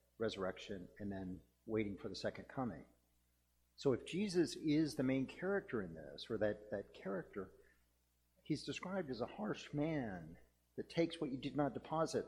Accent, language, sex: American, English, male